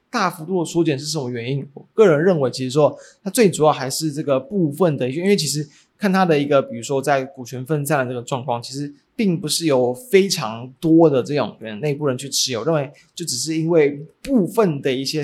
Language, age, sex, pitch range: Chinese, 20-39, male, 135-175 Hz